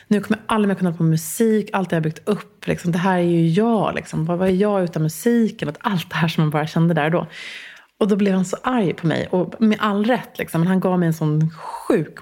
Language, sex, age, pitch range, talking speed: English, female, 30-49, 160-200 Hz, 265 wpm